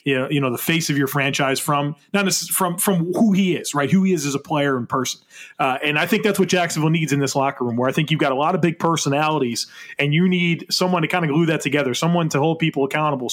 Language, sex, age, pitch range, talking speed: English, male, 30-49, 140-165 Hz, 275 wpm